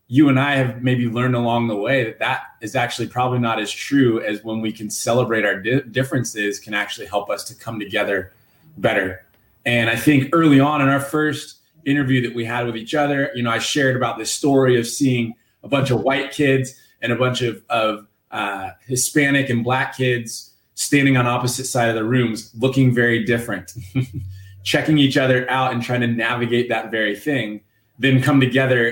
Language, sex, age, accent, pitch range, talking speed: English, male, 20-39, American, 115-135 Hz, 195 wpm